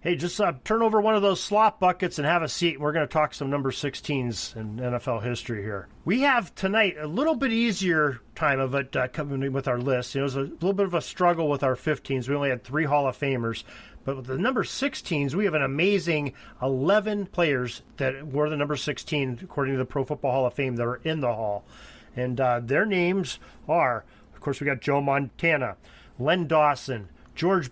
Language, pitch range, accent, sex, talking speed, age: English, 125-170 Hz, American, male, 225 wpm, 40-59